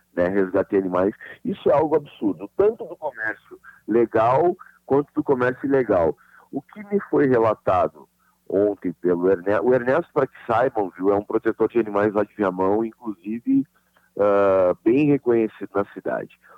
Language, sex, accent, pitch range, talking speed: Portuguese, male, Brazilian, 90-130 Hz, 140 wpm